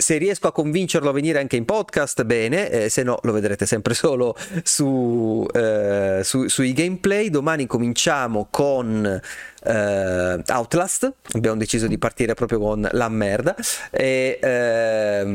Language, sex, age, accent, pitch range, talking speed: Italian, male, 30-49, native, 105-135 Hz, 145 wpm